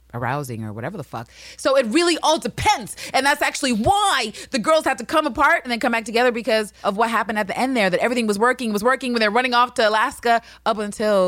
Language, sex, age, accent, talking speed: English, female, 30-49, American, 250 wpm